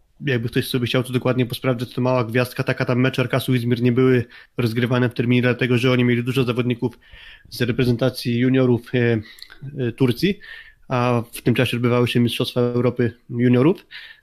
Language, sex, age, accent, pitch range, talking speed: Polish, male, 20-39, native, 125-135 Hz, 175 wpm